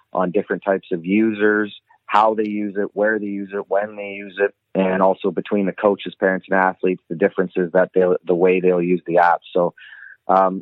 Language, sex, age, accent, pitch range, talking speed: English, male, 30-49, American, 90-105 Hz, 210 wpm